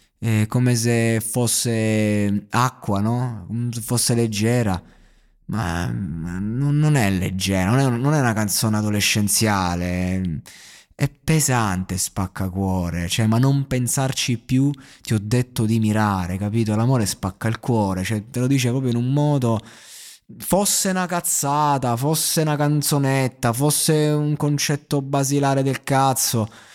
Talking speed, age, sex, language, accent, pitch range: 140 wpm, 20-39, male, Italian, native, 110-140 Hz